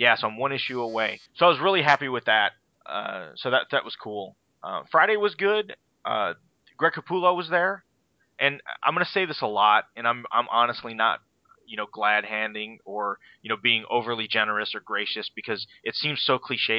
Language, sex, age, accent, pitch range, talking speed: English, male, 30-49, American, 115-155 Hz, 205 wpm